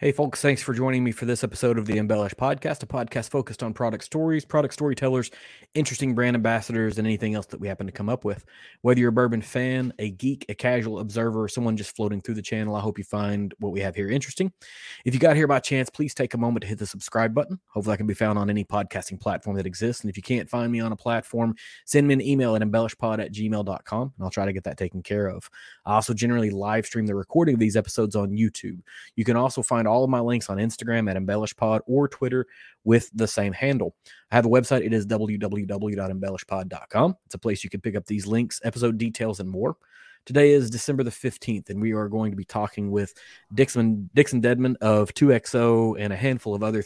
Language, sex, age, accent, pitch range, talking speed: English, male, 20-39, American, 105-125 Hz, 240 wpm